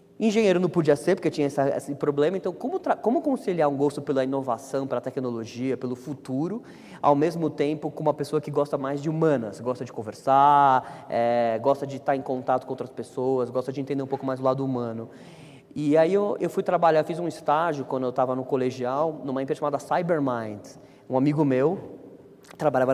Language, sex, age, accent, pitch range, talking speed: Portuguese, male, 20-39, Brazilian, 130-155 Hz, 200 wpm